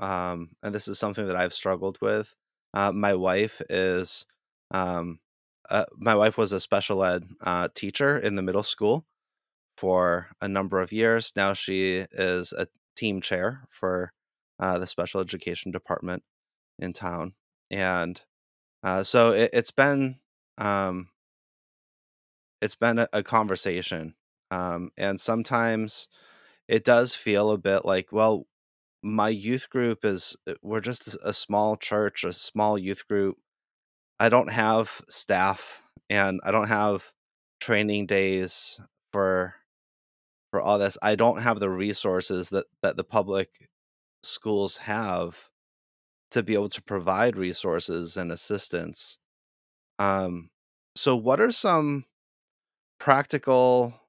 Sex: male